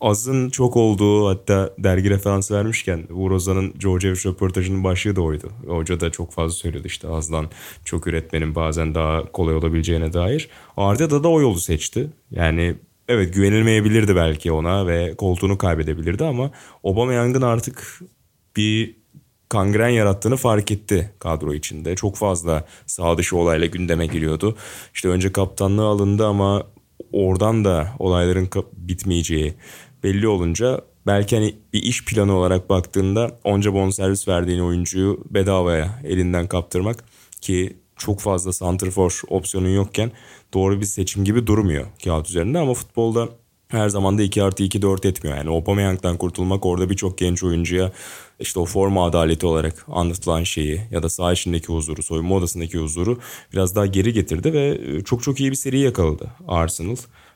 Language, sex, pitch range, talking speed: Turkish, male, 85-105 Hz, 150 wpm